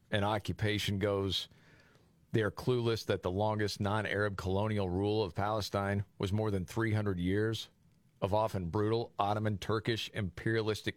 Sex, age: male, 50-69